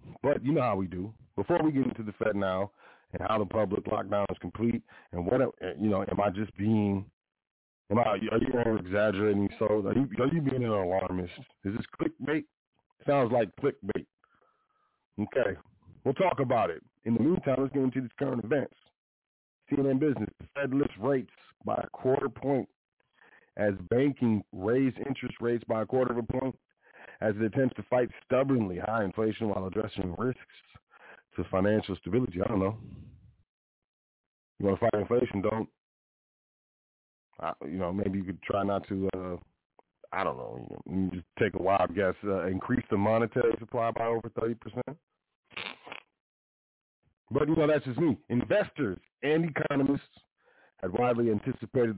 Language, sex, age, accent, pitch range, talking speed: English, male, 40-59, American, 100-130 Hz, 170 wpm